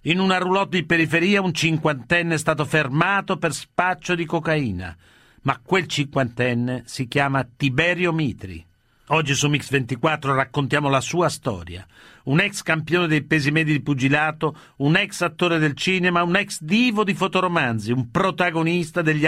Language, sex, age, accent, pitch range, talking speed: Italian, male, 50-69, native, 140-180 Hz, 155 wpm